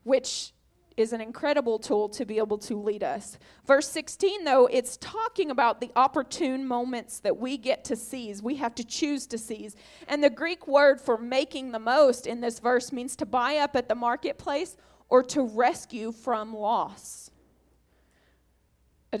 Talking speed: 170 wpm